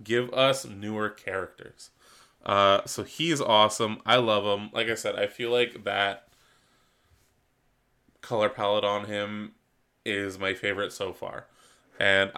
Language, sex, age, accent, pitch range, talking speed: English, male, 20-39, American, 100-120 Hz, 135 wpm